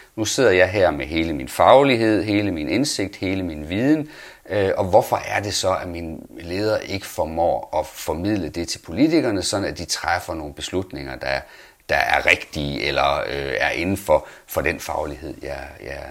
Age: 40-59